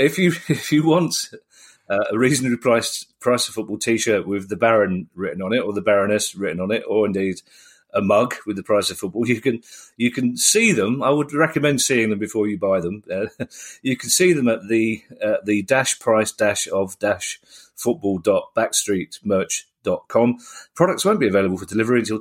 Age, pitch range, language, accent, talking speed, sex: 40-59, 105-130 Hz, English, British, 205 wpm, male